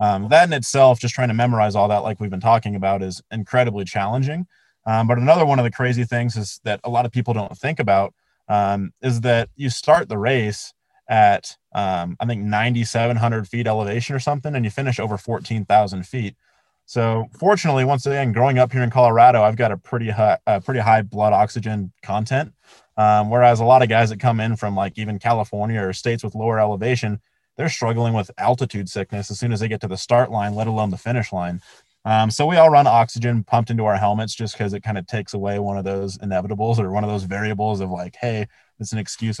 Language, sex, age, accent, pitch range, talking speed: English, male, 20-39, American, 105-120 Hz, 220 wpm